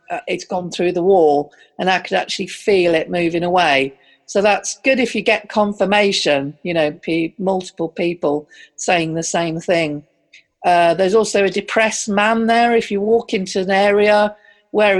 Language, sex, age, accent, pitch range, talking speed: English, female, 50-69, British, 165-205 Hz, 175 wpm